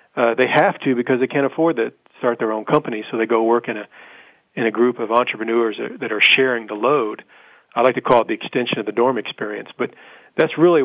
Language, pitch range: English, 115-130 Hz